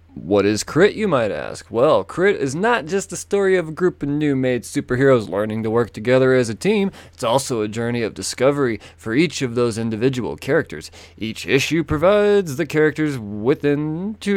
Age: 20-39